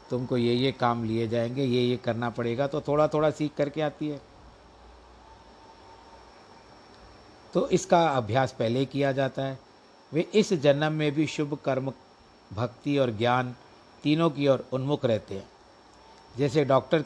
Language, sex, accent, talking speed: Hindi, male, native, 150 wpm